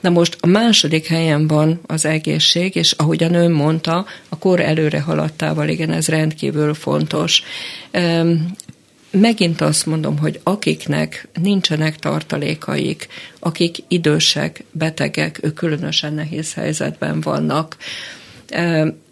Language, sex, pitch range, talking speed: Hungarian, female, 150-165 Hz, 120 wpm